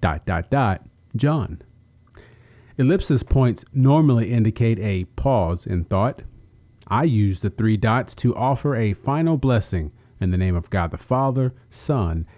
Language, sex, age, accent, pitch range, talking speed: English, male, 40-59, American, 100-130 Hz, 145 wpm